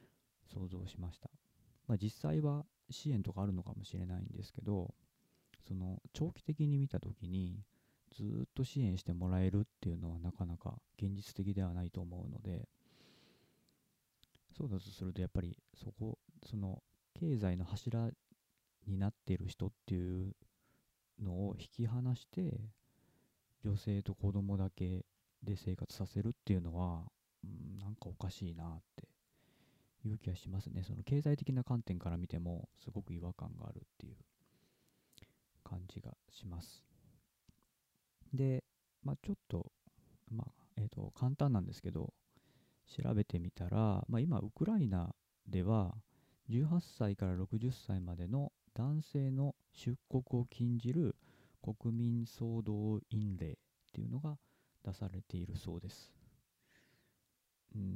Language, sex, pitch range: Japanese, male, 95-125 Hz